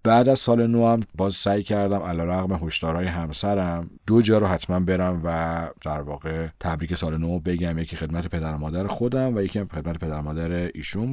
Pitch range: 80-100 Hz